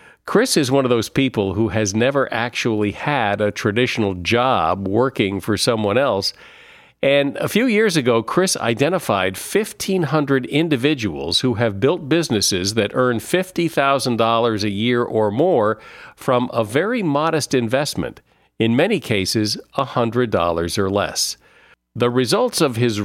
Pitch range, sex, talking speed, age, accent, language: 110-140 Hz, male, 140 wpm, 50-69, American, English